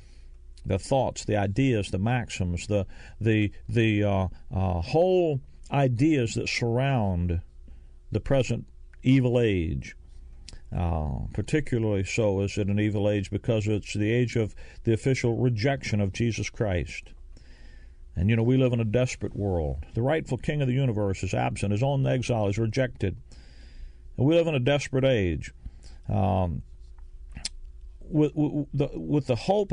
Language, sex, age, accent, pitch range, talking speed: English, male, 50-69, American, 85-125 Hz, 150 wpm